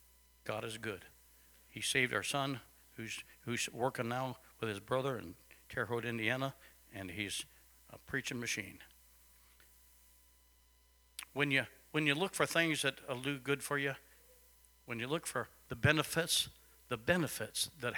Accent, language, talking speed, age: American, English, 150 wpm, 60-79